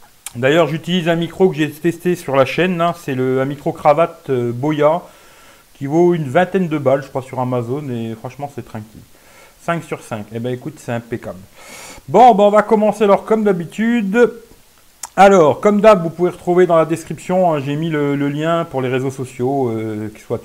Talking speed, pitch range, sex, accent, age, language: 210 wpm, 130-170 Hz, male, French, 40-59, English